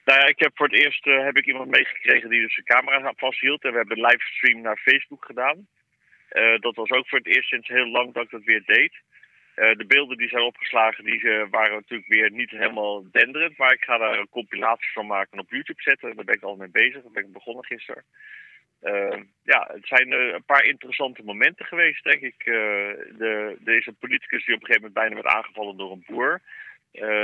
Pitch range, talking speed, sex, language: 105-140 Hz, 225 wpm, male, Dutch